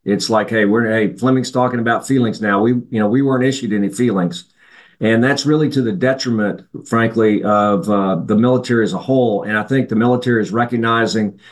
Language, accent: English, American